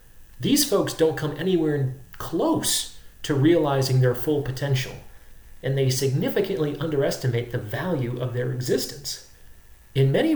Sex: male